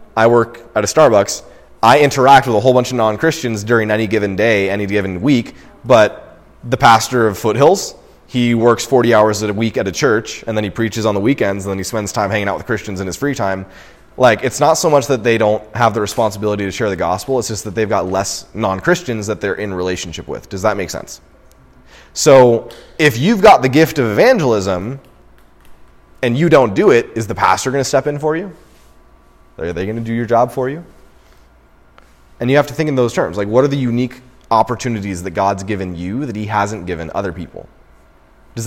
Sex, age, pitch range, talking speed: male, 20-39, 95-130 Hz, 220 wpm